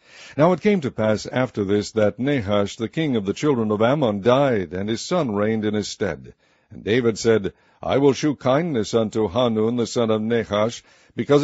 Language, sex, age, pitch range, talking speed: English, male, 60-79, 110-130 Hz, 200 wpm